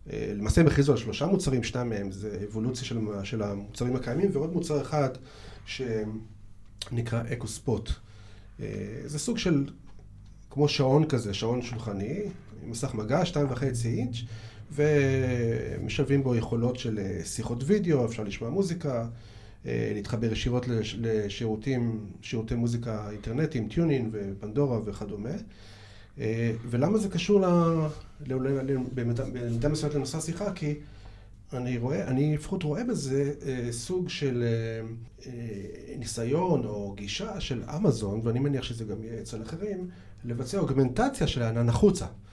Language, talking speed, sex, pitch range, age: Hebrew, 120 wpm, male, 110-145 Hz, 30-49